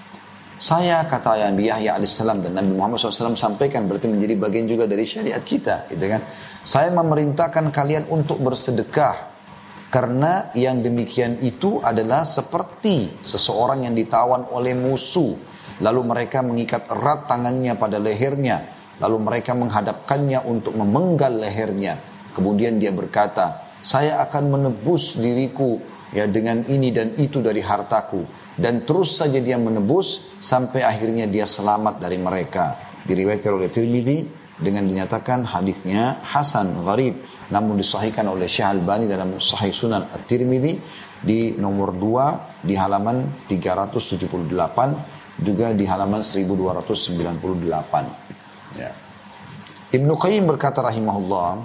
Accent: native